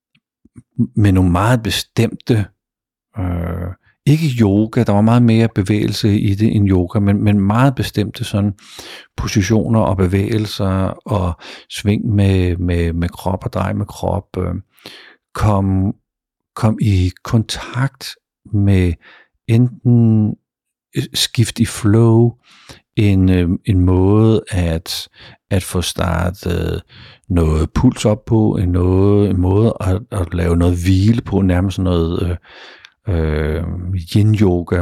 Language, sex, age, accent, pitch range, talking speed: Danish, male, 50-69, native, 90-110 Hz, 110 wpm